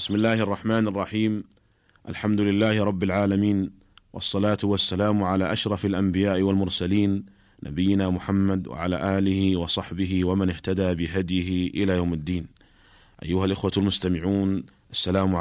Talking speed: 115 wpm